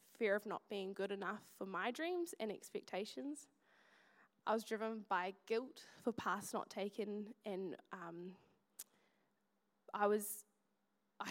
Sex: female